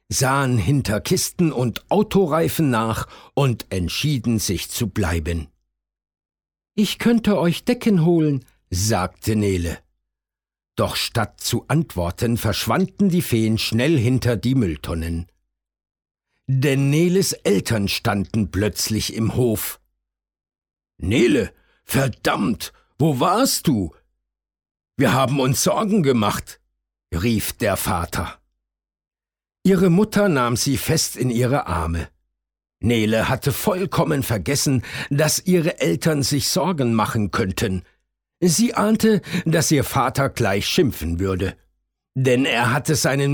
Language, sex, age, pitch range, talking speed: German, male, 60-79, 95-160 Hz, 110 wpm